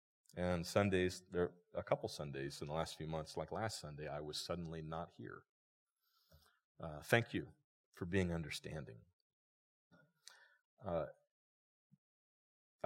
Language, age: English, 40-59